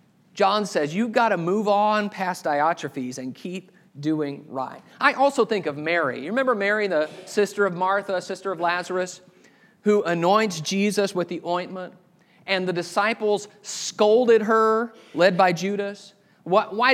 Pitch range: 170-215 Hz